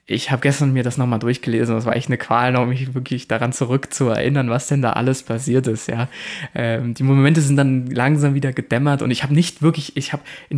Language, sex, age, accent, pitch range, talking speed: German, male, 20-39, German, 125-150 Hz, 225 wpm